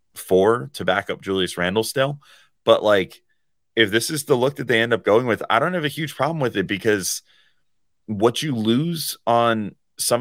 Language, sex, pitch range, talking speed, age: English, male, 90-115 Hz, 200 wpm, 30-49